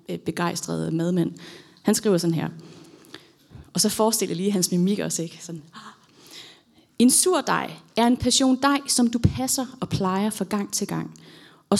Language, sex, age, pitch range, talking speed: Danish, female, 30-49, 180-240 Hz, 160 wpm